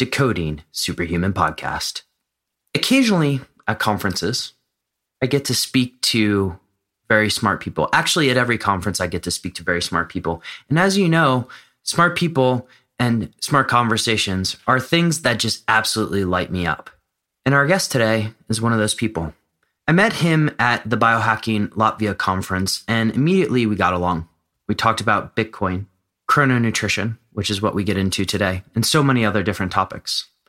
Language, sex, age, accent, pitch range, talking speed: English, male, 30-49, American, 100-130 Hz, 165 wpm